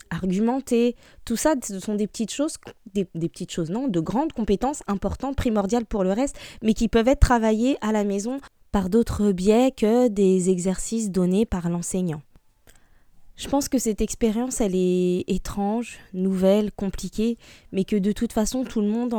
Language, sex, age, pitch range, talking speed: French, female, 20-39, 185-225 Hz, 175 wpm